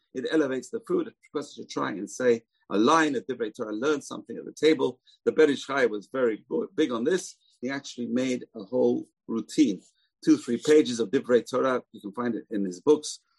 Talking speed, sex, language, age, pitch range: 210 wpm, male, English, 50-69, 125-190 Hz